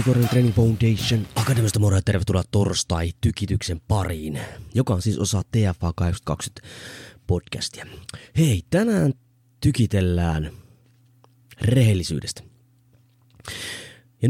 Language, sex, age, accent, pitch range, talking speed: Finnish, male, 30-49, native, 90-125 Hz, 90 wpm